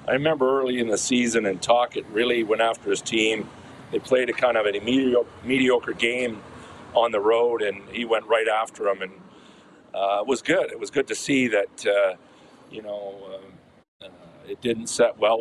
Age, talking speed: 40-59, 195 wpm